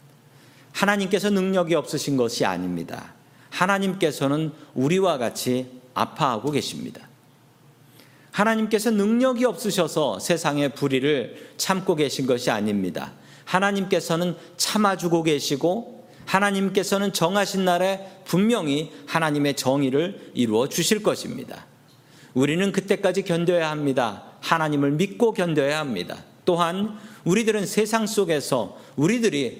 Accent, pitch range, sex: native, 135-195 Hz, male